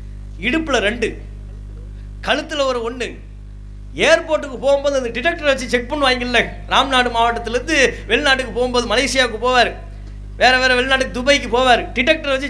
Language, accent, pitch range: English, Indian, 230-310 Hz